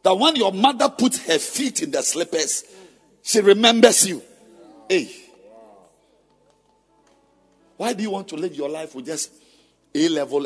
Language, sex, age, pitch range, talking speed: English, male, 50-69, 160-260 Hz, 150 wpm